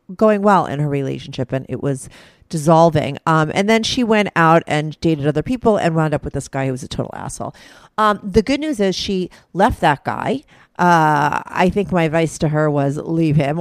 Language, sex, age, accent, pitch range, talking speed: English, female, 40-59, American, 150-205 Hz, 215 wpm